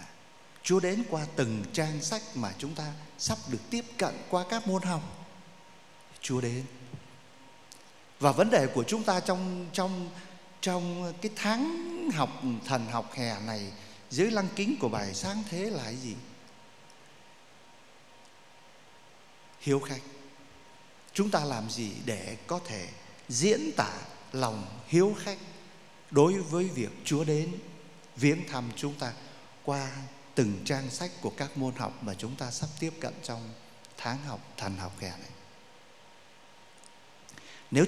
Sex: male